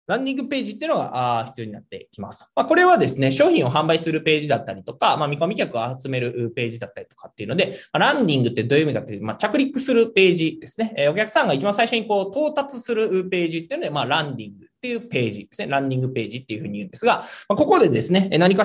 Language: Japanese